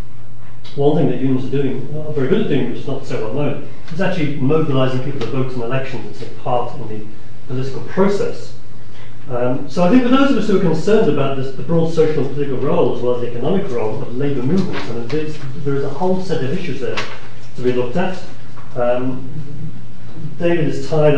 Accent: British